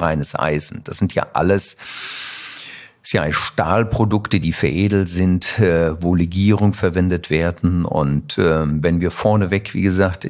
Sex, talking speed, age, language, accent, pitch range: male, 115 wpm, 50-69, German, German, 80-100 Hz